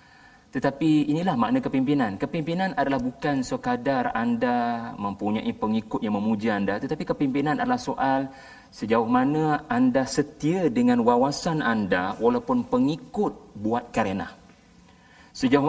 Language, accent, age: Malayalam, Indonesian, 40-59